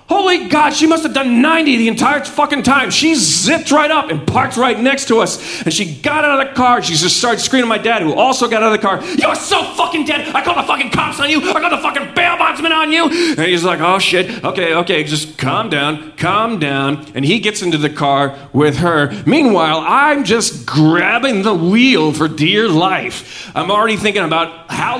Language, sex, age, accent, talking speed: English, male, 30-49, American, 230 wpm